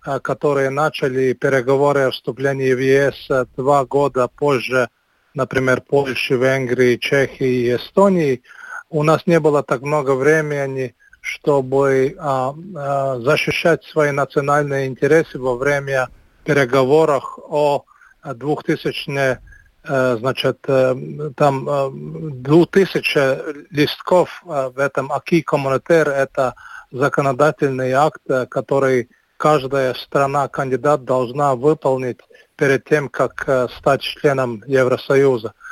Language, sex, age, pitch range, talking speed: Russian, male, 50-69, 130-150 Hz, 90 wpm